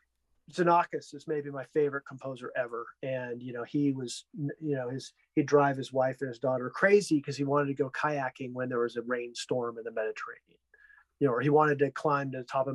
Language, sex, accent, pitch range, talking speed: English, male, American, 130-160 Hz, 225 wpm